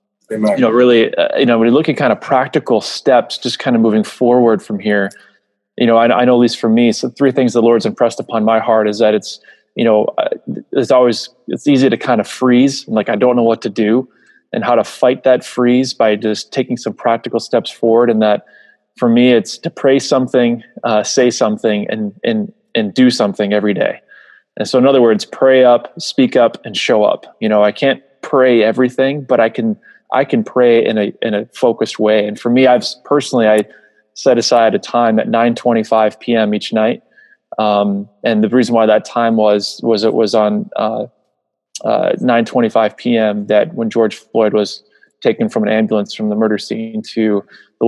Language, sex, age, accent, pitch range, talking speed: English, male, 20-39, American, 110-125 Hz, 215 wpm